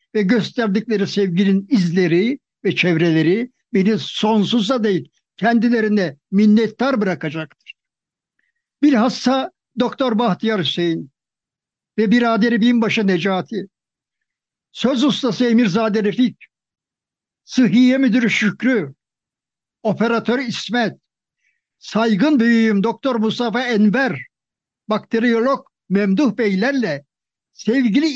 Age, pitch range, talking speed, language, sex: 60-79, 195-250 Hz, 80 wpm, Turkish, male